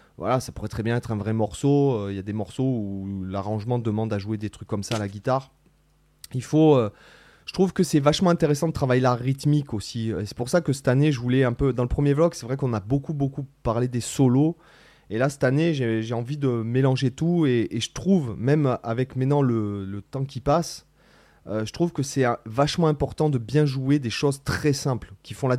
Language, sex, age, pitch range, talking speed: French, male, 30-49, 110-145 Hz, 245 wpm